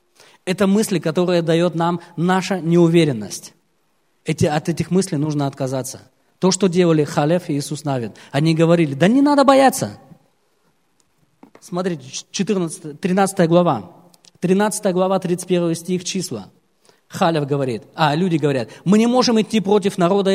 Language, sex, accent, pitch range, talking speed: Russian, male, native, 160-200 Hz, 130 wpm